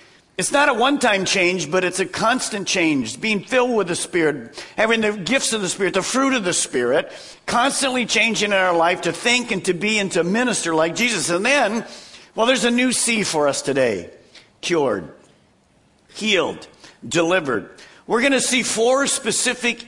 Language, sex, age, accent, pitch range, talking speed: English, male, 50-69, American, 170-240 Hz, 180 wpm